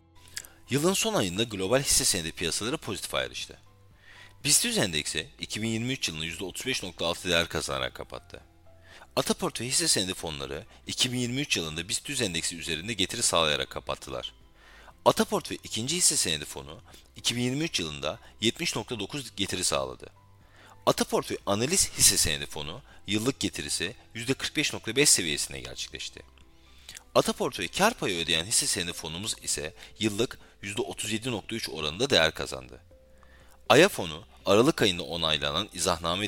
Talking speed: 110 wpm